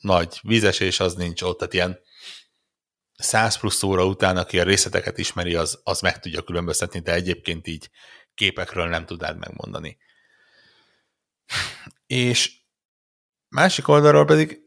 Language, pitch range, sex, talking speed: Hungarian, 90-110 Hz, male, 130 wpm